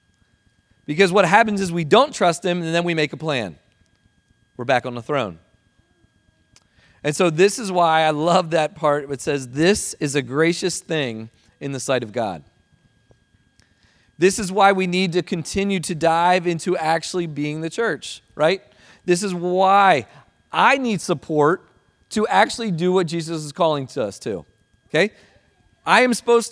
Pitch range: 135-200 Hz